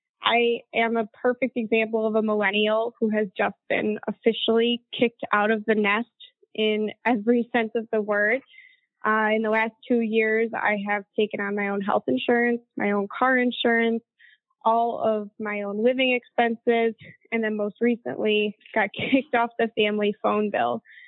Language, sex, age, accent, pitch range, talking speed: English, female, 10-29, American, 210-240 Hz, 170 wpm